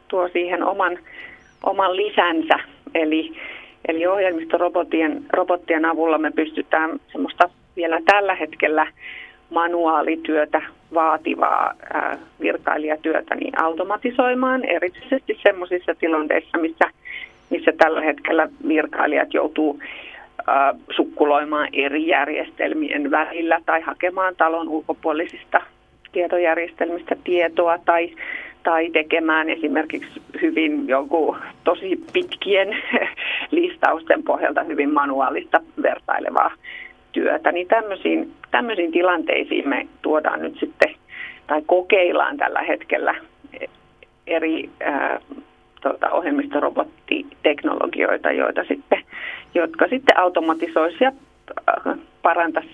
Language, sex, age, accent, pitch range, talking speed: Finnish, female, 30-49, native, 160-260 Hz, 85 wpm